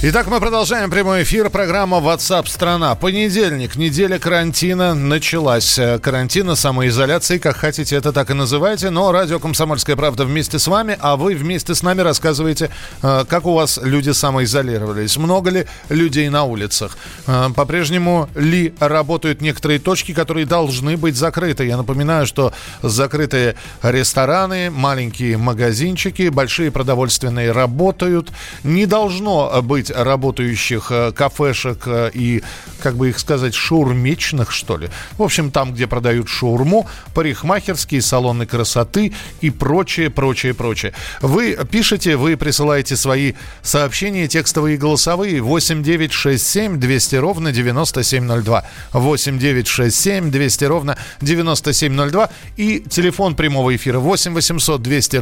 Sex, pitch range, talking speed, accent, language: male, 130-170 Hz, 125 wpm, native, Russian